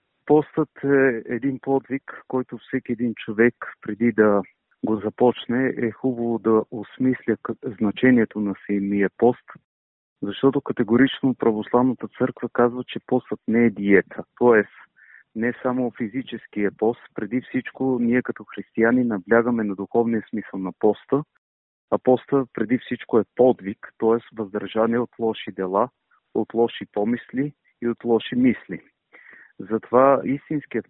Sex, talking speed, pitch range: male, 130 wpm, 105-125 Hz